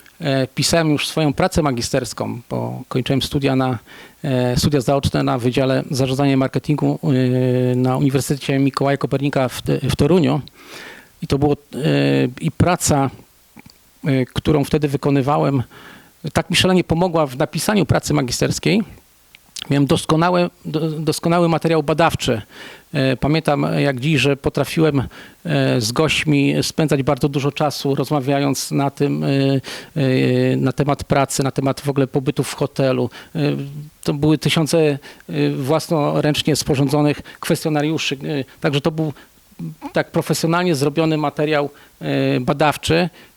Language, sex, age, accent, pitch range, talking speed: Polish, male, 40-59, native, 135-155 Hz, 110 wpm